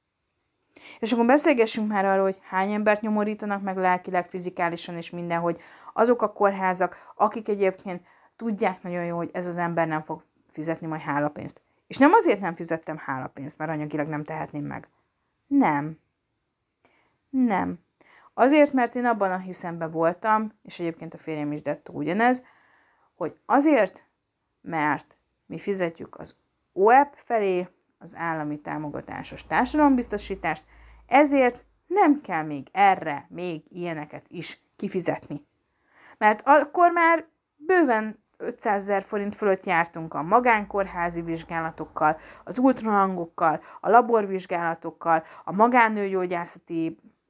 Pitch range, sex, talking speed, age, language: 165-215 Hz, female, 125 wpm, 30-49, English